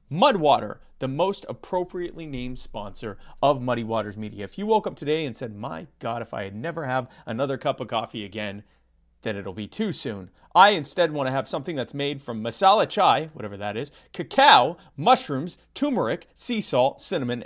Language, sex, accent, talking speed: English, male, American, 185 wpm